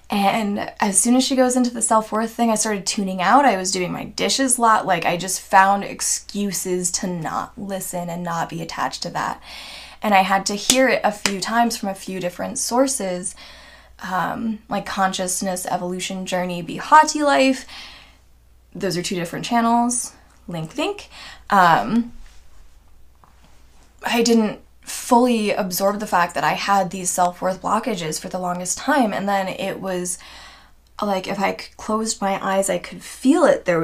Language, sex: English, female